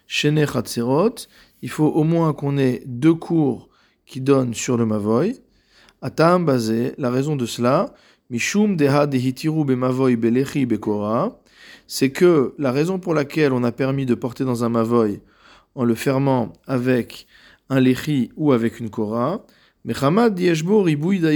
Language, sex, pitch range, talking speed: French, male, 125-160 Hz, 120 wpm